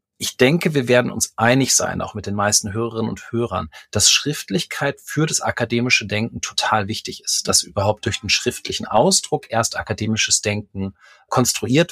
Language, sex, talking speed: German, male, 165 wpm